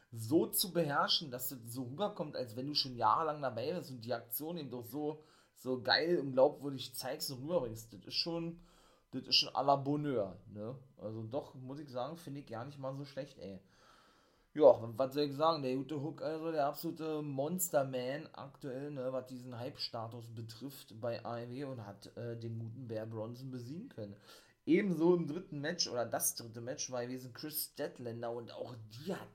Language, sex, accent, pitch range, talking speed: German, male, German, 115-150 Hz, 195 wpm